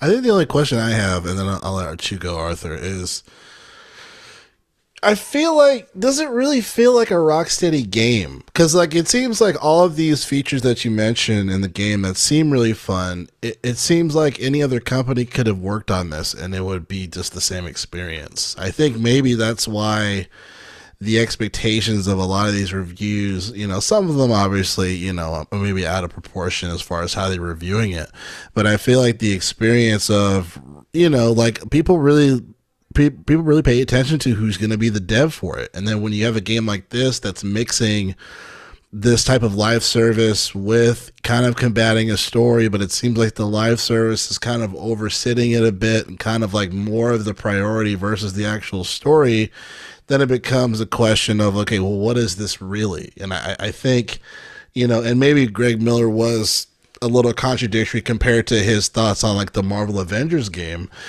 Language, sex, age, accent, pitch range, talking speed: English, male, 20-39, American, 100-125 Hz, 205 wpm